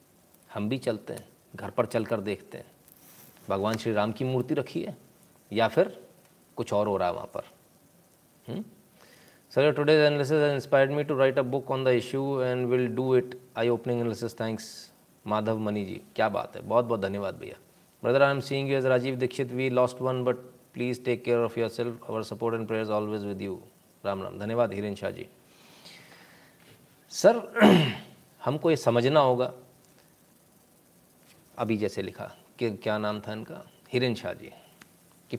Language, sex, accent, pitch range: Hindi, male, native, 110-140 Hz